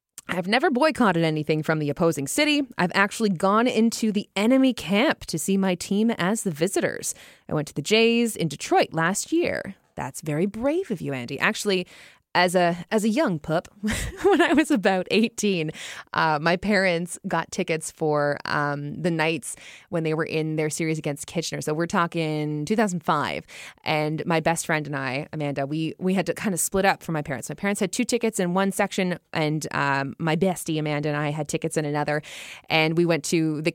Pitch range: 155-195 Hz